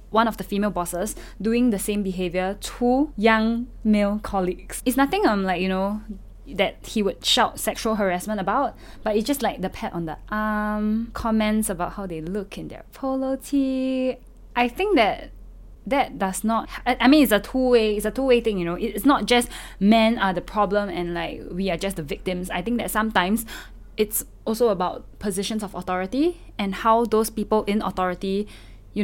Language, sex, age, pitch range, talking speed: English, female, 10-29, 195-240 Hz, 190 wpm